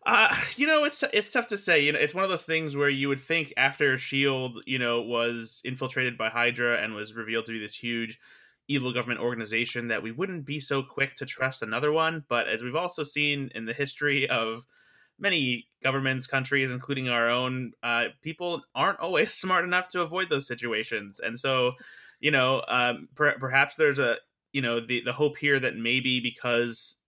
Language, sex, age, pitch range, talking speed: English, male, 20-39, 120-140 Hz, 195 wpm